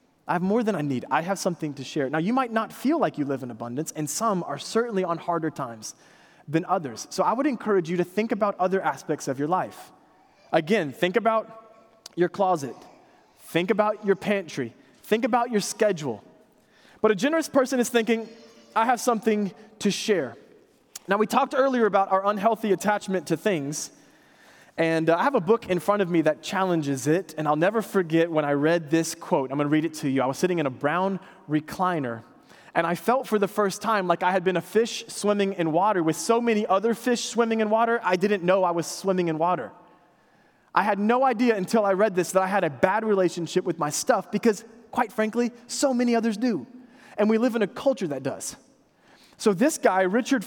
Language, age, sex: English, 20-39, male